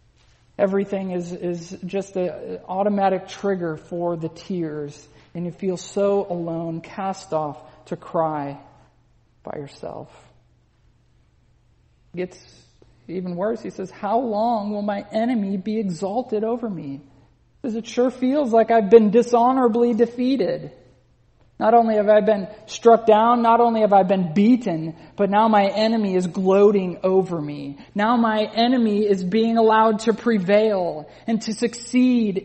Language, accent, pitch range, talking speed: English, American, 185-235 Hz, 140 wpm